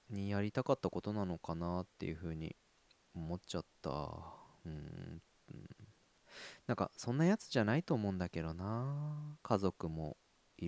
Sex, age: male, 20-39